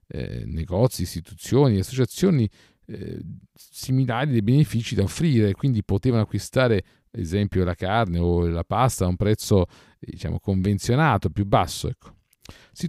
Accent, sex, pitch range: native, male, 95-125 Hz